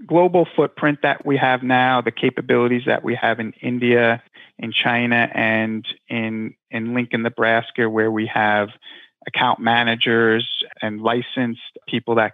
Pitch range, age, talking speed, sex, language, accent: 115-125 Hz, 30-49, 140 wpm, male, English, American